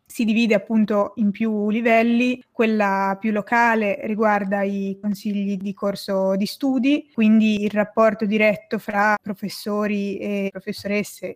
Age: 20-39